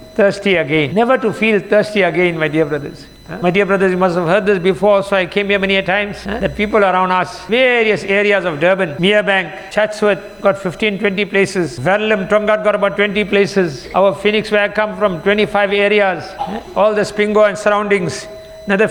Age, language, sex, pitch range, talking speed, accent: 60-79, English, male, 175-210 Hz, 200 wpm, Indian